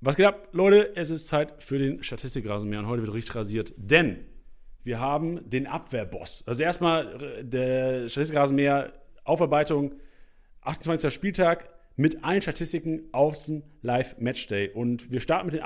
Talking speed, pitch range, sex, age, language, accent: 150 wpm, 130-175 Hz, male, 40-59, German, German